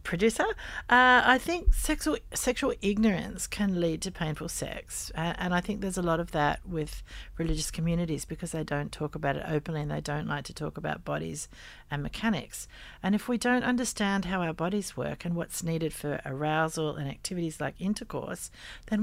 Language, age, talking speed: English, 50-69, 190 wpm